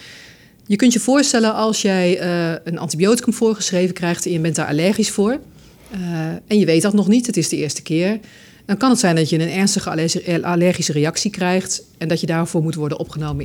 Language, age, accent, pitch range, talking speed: Dutch, 40-59, Dutch, 165-210 Hz, 200 wpm